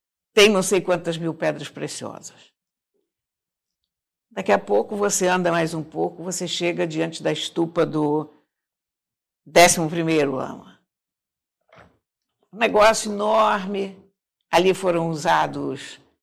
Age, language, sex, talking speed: 60-79, Portuguese, female, 105 wpm